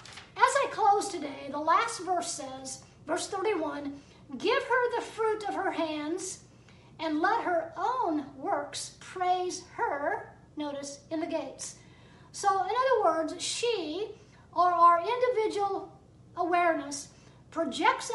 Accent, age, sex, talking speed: American, 50-69, female, 125 wpm